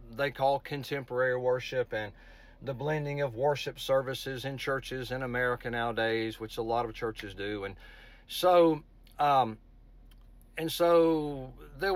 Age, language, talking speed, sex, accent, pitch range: 50-69, English, 135 wpm, male, American, 130-185 Hz